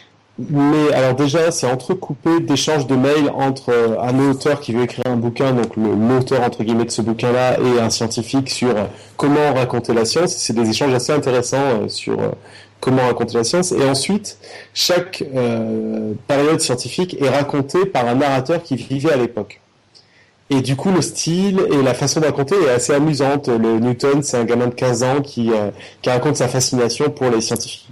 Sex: male